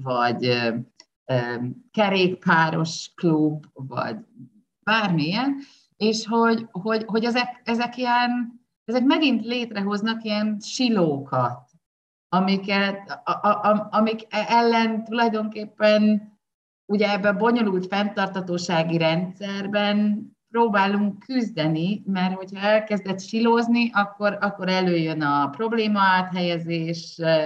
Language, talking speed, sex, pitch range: Hungarian, 90 wpm, female, 170-220 Hz